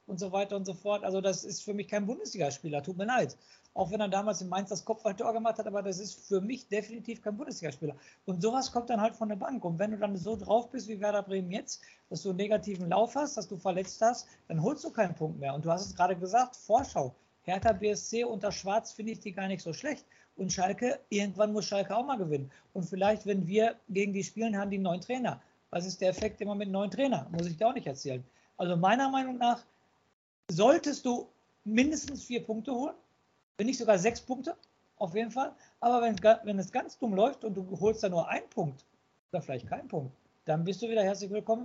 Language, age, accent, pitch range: German, 50-69, German, 190-230 Hz